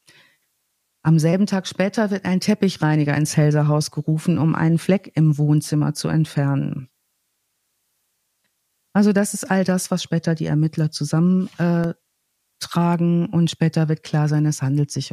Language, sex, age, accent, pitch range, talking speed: German, female, 50-69, German, 155-195 Hz, 140 wpm